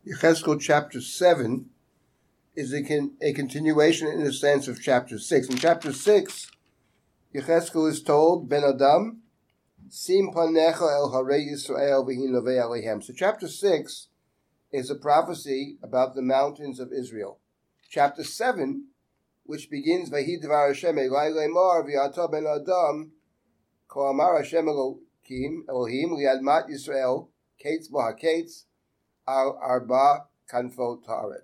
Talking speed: 115 wpm